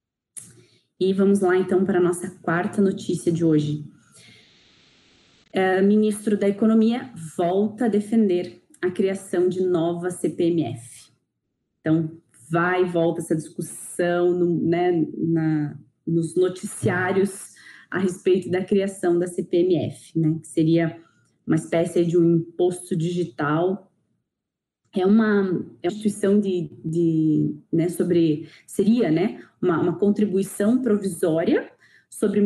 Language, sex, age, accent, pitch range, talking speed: Portuguese, female, 20-39, Brazilian, 170-210 Hz, 115 wpm